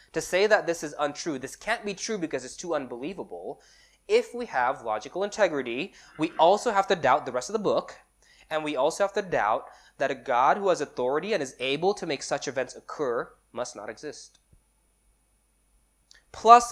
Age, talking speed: 20-39, 190 wpm